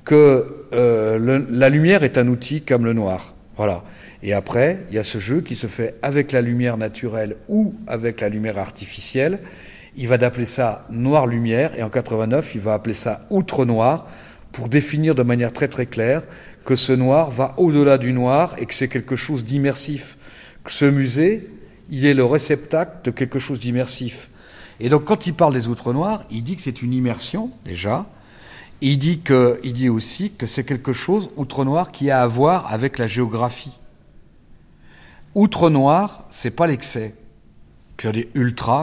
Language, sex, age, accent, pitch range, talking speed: French, male, 50-69, French, 115-145 Hz, 180 wpm